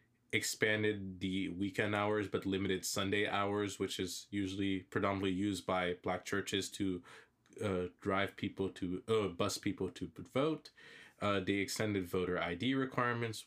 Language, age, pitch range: English, 20-39, 95-110 Hz